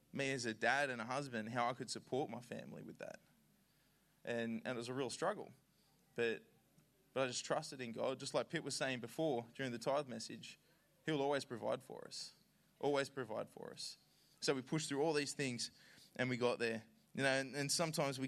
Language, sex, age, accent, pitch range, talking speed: English, male, 20-39, Australian, 120-145 Hz, 215 wpm